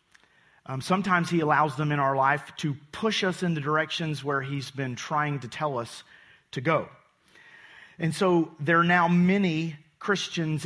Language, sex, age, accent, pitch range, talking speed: English, male, 40-59, American, 135-160 Hz, 170 wpm